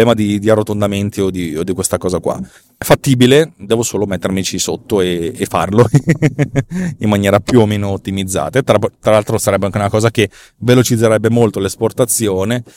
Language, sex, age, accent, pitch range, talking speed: Italian, male, 30-49, native, 105-125 Hz, 175 wpm